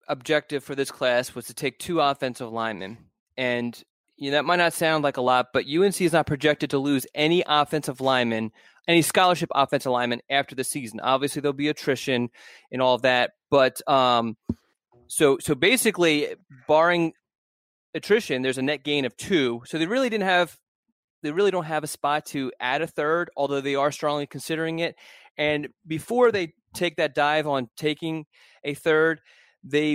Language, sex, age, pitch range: English, male, 30-49, 125-155 Hz